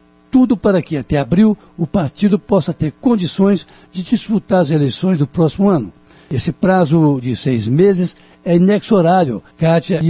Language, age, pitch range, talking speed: Portuguese, 60-79, 150-195 Hz, 155 wpm